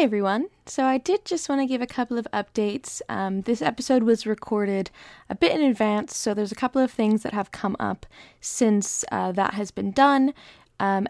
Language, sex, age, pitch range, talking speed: English, female, 20-39, 200-250 Hz, 210 wpm